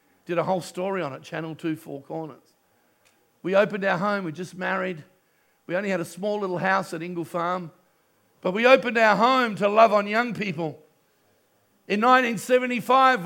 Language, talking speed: English, 175 wpm